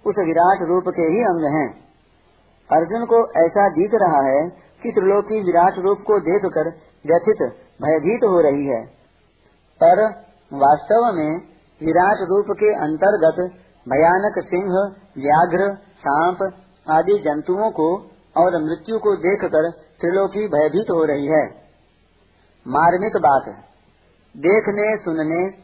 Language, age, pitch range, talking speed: Hindi, 50-69, 160-205 Hz, 120 wpm